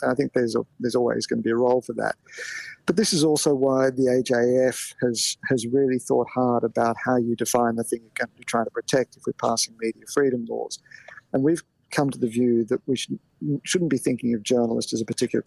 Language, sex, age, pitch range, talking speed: English, male, 50-69, 115-135 Hz, 235 wpm